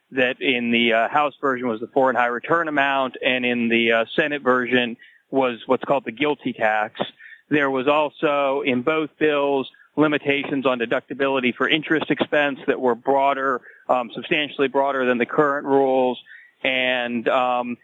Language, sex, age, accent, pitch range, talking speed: English, male, 40-59, American, 125-145 Hz, 160 wpm